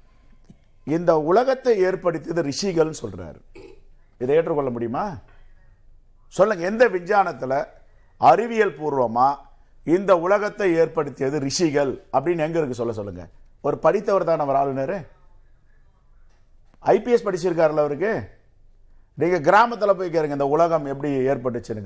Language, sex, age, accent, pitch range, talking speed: Tamil, male, 50-69, native, 115-175 Hz, 100 wpm